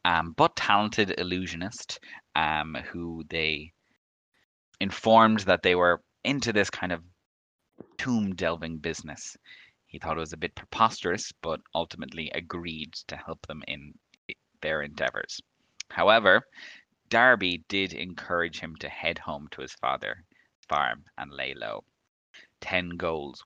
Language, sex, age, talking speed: English, male, 20-39, 130 wpm